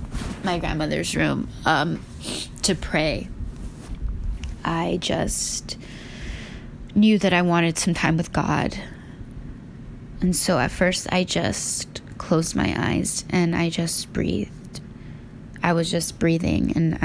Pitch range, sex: 165-185 Hz, female